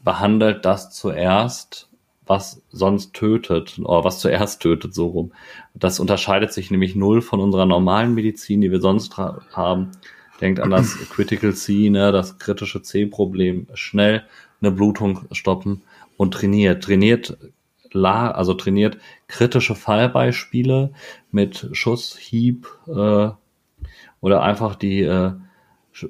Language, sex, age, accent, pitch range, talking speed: German, male, 40-59, German, 95-110 Hz, 115 wpm